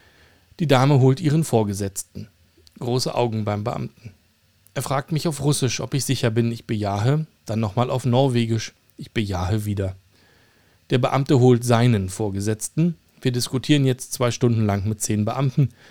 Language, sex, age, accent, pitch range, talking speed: German, male, 40-59, German, 100-135 Hz, 155 wpm